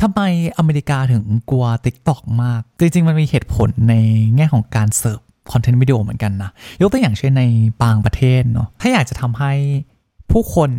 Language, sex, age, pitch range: Thai, male, 20-39, 120-155 Hz